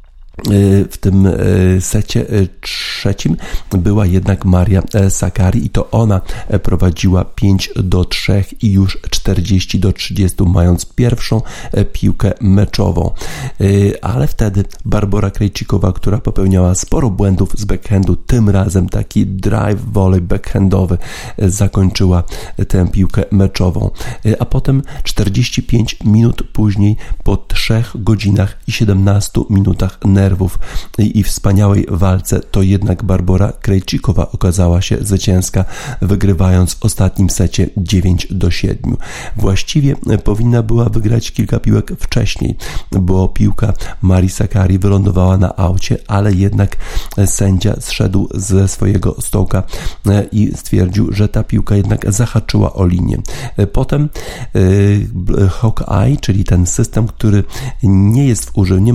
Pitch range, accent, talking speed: 95-110 Hz, native, 115 wpm